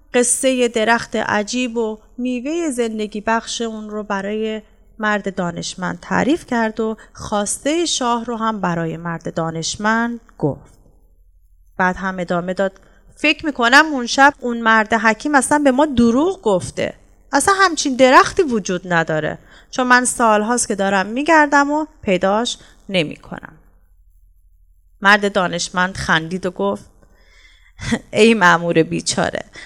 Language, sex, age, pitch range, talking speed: Persian, female, 30-49, 175-275 Hz, 125 wpm